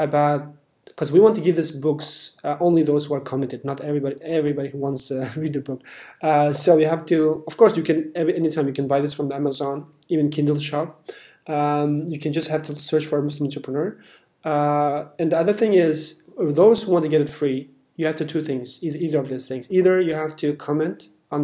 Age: 30-49